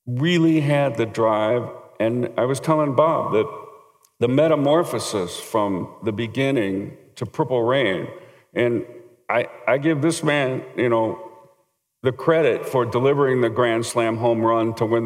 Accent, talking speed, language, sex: American, 150 wpm, English, male